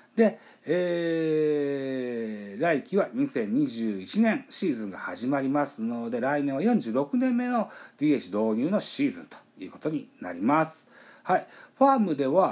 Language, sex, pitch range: Japanese, male, 145-225 Hz